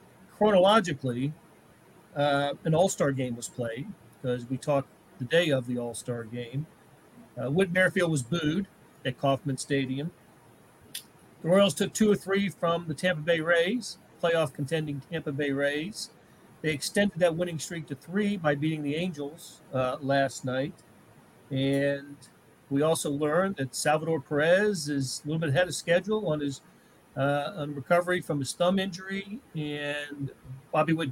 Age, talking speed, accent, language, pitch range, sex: 40-59, 155 wpm, American, English, 140-175 Hz, male